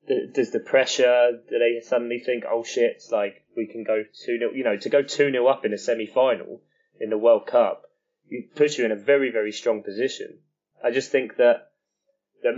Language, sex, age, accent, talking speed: English, male, 20-39, British, 215 wpm